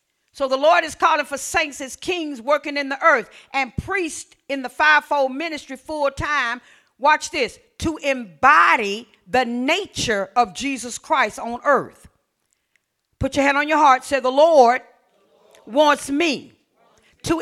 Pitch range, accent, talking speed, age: 245-305 Hz, American, 150 wpm, 40-59